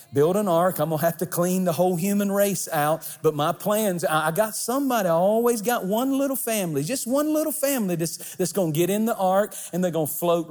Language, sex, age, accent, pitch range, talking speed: English, male, 40-59, American, 160-200 Hz, 230 wpm